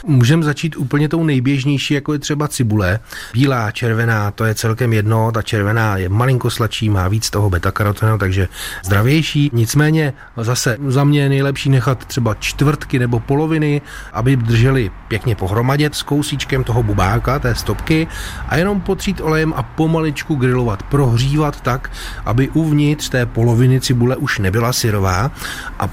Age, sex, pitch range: 30-49, male, 115-145 Hz